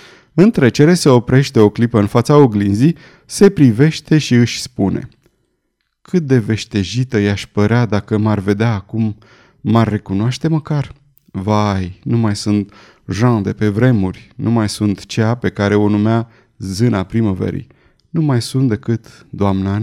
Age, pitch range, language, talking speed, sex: 30-49, 105-140 Hz, Romanian, 150 wpm, male